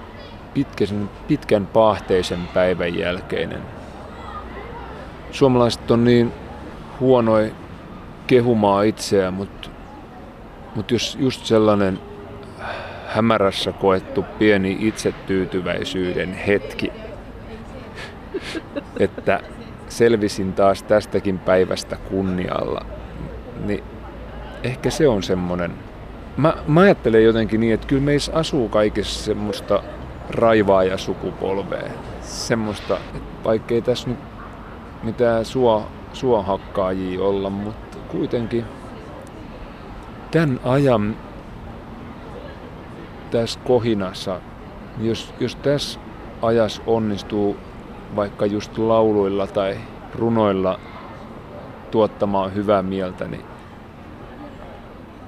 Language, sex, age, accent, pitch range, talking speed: Finnish, male, 30-49, native, 95-115 Hz, 75 wpm